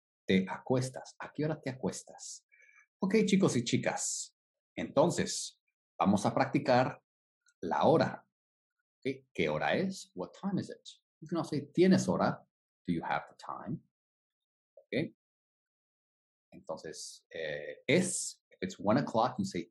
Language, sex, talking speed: English, male, 130 wpm